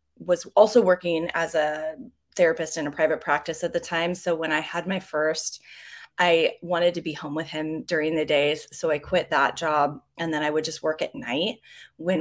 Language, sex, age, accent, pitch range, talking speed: English, female, 20-39, American, 160-195 Hz, 210 wpm